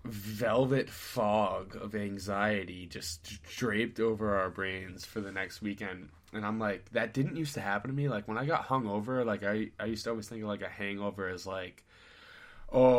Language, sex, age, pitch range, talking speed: English, male, 10-29, 100-115 Hz, 195 wpm